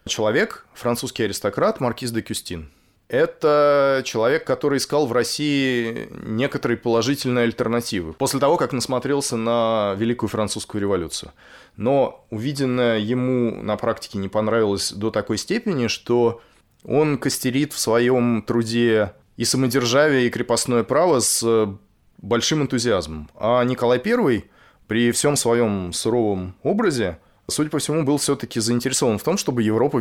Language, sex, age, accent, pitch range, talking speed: Russian, male, 20-39, native, 110-130 Hz, 130 wpm